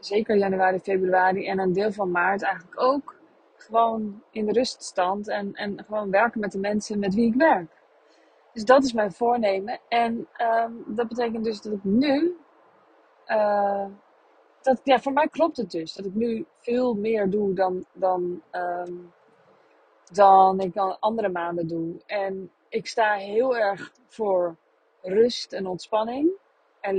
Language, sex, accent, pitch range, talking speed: Dutch, female, Dutch, 185-230 Hz, 160 wpm